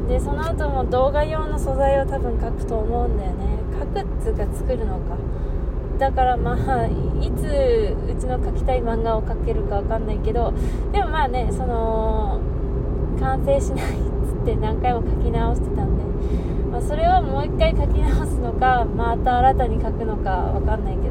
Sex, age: female, 20-39